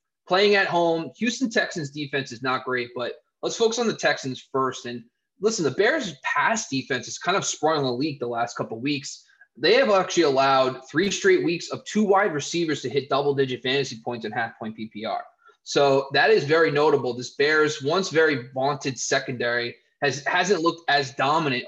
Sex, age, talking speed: male, 20-39, 190 wpm